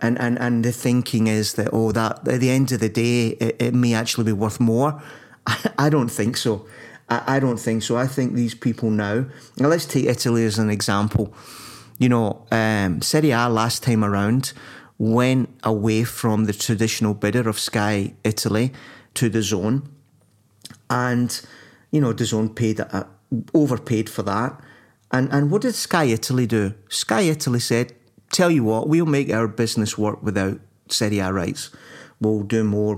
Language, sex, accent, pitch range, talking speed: English, male, British, 110-130 Hz, 180 wpm